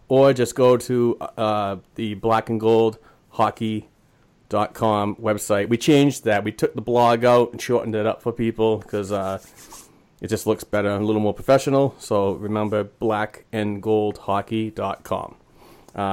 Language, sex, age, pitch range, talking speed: English, male, 30-49, 105-120 Hz, 130 wpm